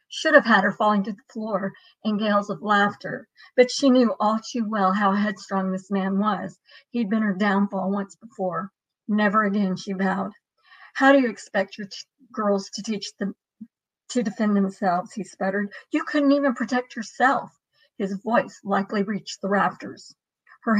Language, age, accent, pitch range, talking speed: English, 50-69, American, 195-225 Hz, 175 wpm